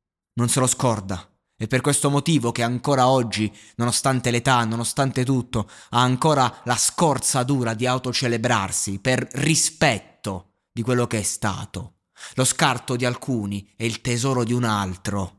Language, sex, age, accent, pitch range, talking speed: Italian, male, 20-39, native, 100-125 Hz, 150 wpm